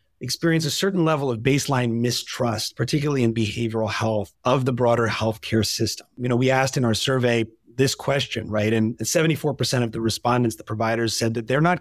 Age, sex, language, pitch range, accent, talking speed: 30-49, male, English, 115-135 Hz, American, 190 wpm